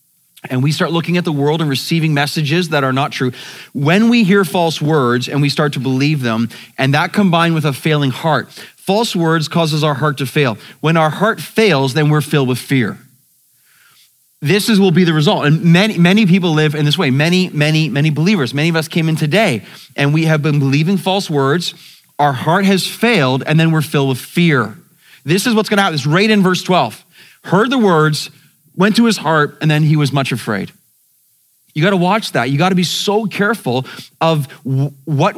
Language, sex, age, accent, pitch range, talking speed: English, male, 30-49, American, 145-185 Hz, 210 wpm